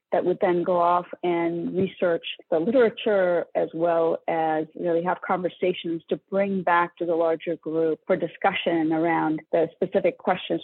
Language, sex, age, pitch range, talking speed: English, female, 40-59, 165-190 Hz, 160 wpm